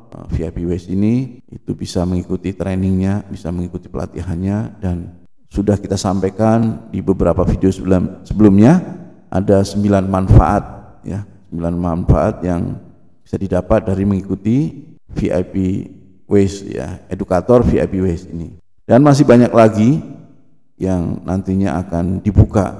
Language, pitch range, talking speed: Indonesian, 95-115 Hz, 120 wpm